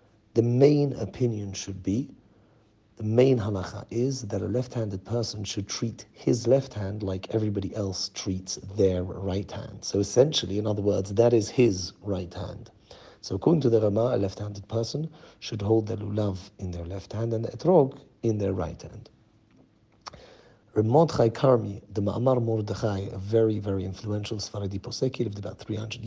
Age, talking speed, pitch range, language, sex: 50-69, 165 wpm, 100-120 Hz, English, male